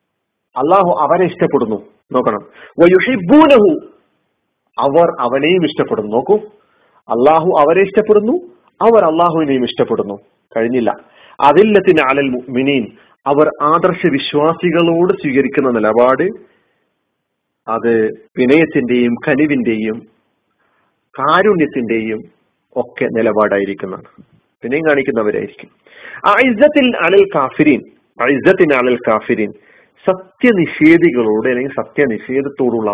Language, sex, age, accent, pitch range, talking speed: Malayalam, male, 40-59, native, 120-190 Hz, 65 wpm